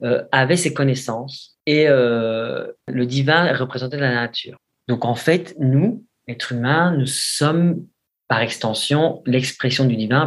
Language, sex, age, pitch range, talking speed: French, male, 40-59, 120-155 Hz, 140 wpm